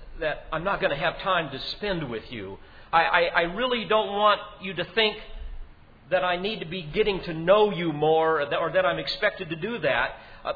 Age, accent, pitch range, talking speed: 50-69, American, 150-210 Hz, 220 wpm